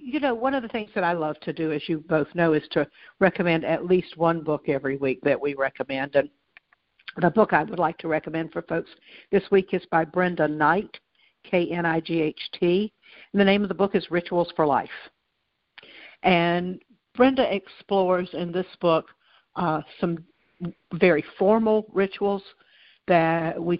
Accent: American